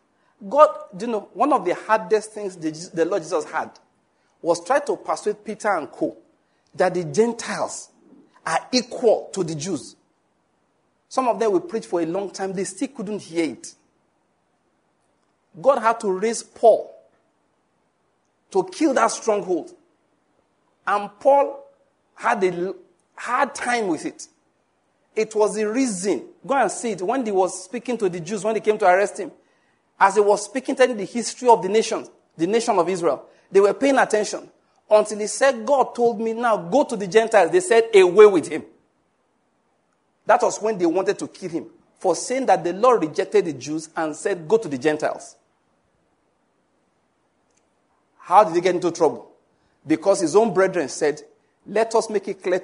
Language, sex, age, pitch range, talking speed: English, male, 50-69, 180-240 Hz, 170 wpm